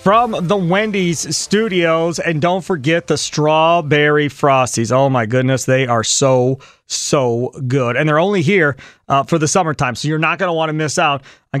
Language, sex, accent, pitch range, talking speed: English, male, American, 140-175 Hz, 185 wpm